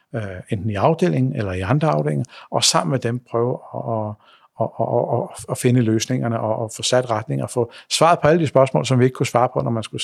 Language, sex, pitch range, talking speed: Danish, male, 115-140 Hz, 225 wpm